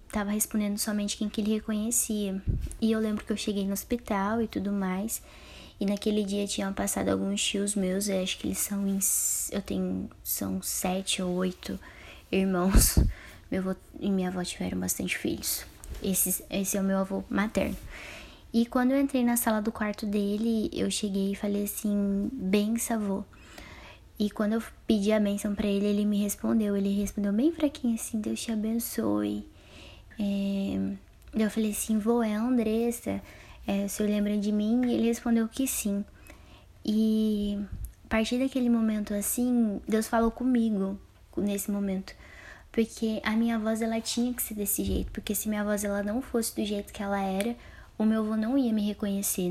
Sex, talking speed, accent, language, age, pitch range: female, 180 wpm, Brazilian, Portuguese, 10-29, 195-220 Hz